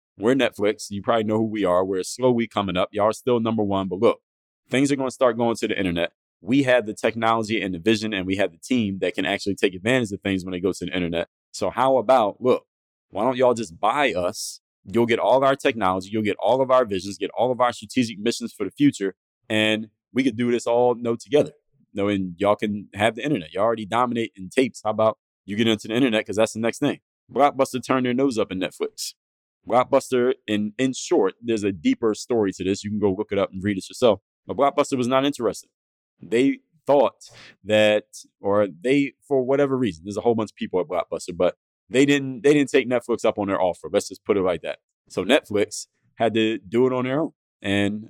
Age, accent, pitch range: 20-39, American, 100-125 Hz